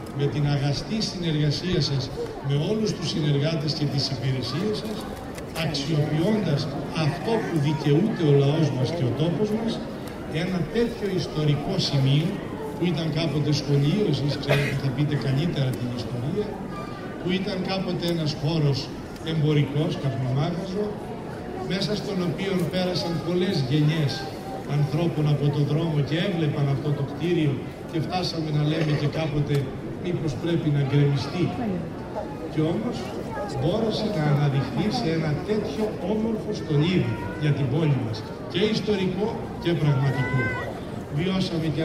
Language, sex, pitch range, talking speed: Greek, male, 140-175 Hz, 130 wpm